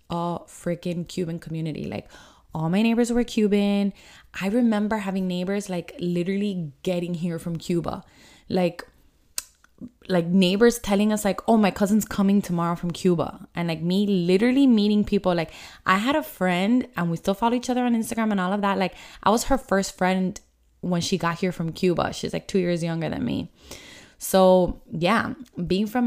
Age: 20-39